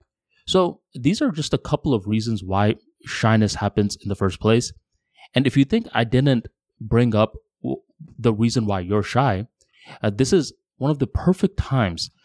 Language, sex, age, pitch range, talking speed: English, male, 20-39, 105-135 Hz, 175 wpm